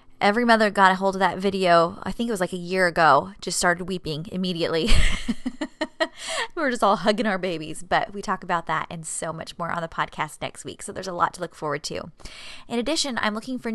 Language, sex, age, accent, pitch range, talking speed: English, female, 20-39, American, 180-225 Hz, 235 wpm